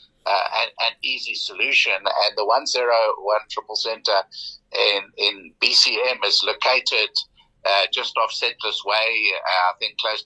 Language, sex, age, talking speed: English, male, 60-79, 135 wpm